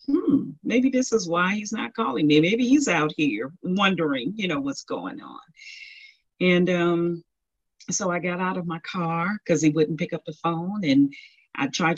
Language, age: English, 40-59